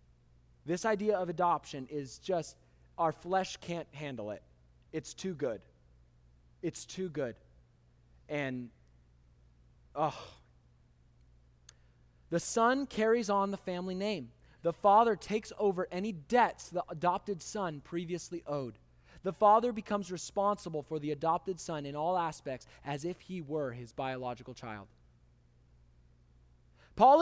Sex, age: male, 20-39